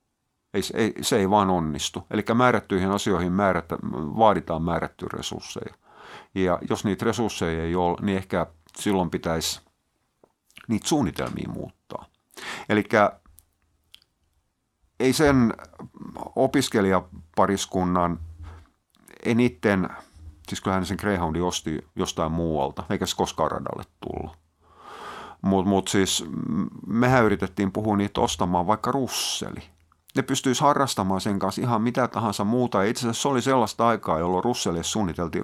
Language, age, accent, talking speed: Finnish, 50-69, native, 120 wpm